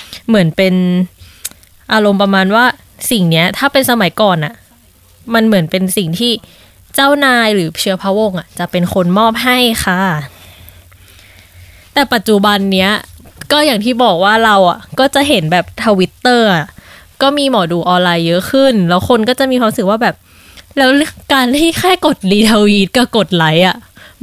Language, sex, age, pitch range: Thai, female, 20-39, 180-250 Hz